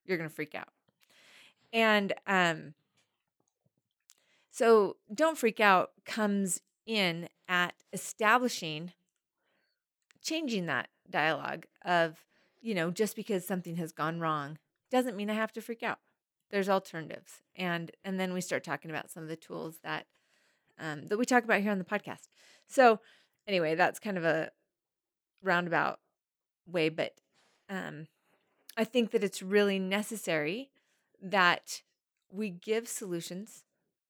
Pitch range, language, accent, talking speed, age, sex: 165-215 Hz, English, American, 135 wpm, 30-49, female